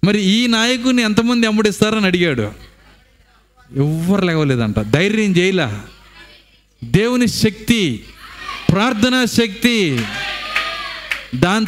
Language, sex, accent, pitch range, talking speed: Telugu, male, native, 150-230 Hz, 75 wpm